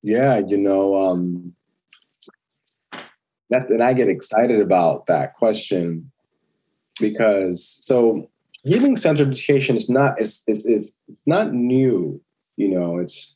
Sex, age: male, 30-49